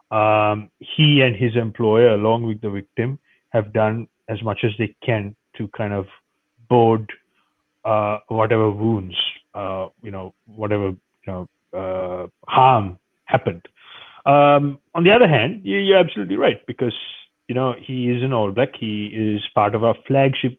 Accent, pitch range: Indian, 110-135 Hz